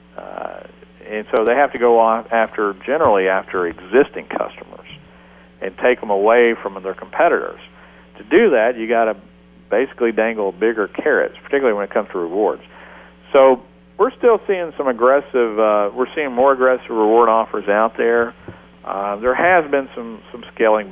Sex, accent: male, American